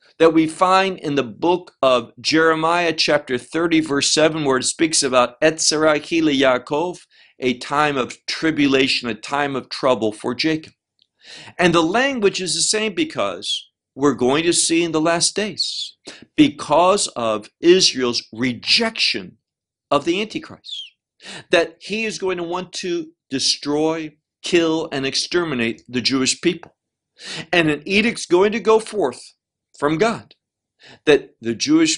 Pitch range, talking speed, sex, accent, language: 130-180 Hz, 145 wpm, male, American, English